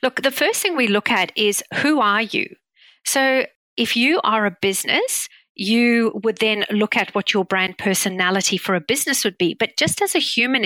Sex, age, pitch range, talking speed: female, 40-59, 200-250 Hz, 205 wpm